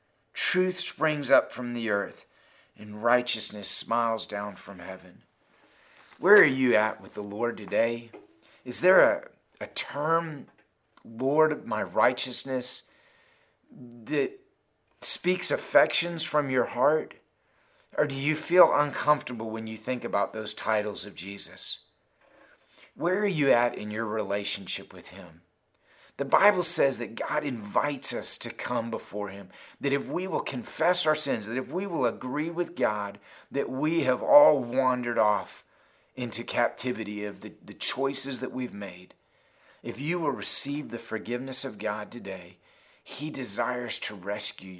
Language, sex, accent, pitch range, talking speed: English, male, American, 105-150 Hz, 145 wpm